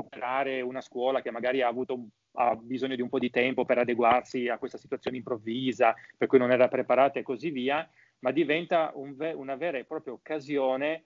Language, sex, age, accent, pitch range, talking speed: Italian, male, 30-49, native, 120-155 Hz, 190 wpm